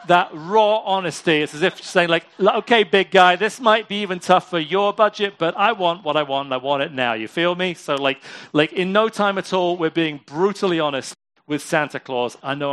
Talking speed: 235 wpm